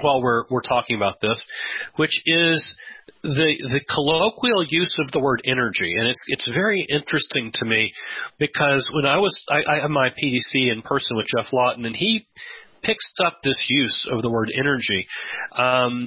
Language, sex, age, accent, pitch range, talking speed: English, male, 40-59, American, 120-150 Hz, 180 wpm